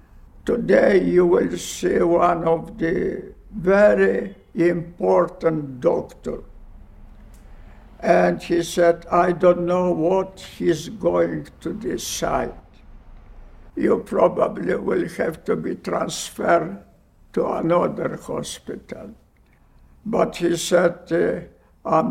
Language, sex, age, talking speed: English, male, 60-79, 95 wpm